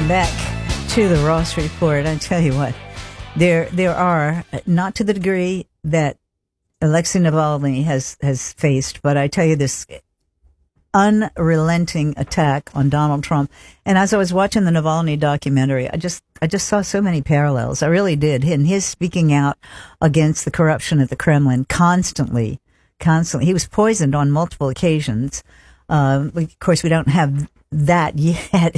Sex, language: female, English